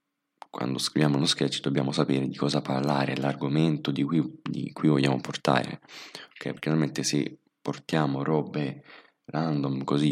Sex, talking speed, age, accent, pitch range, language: male, 140 wpm, 20-39, native, 65-80 Hz, Italian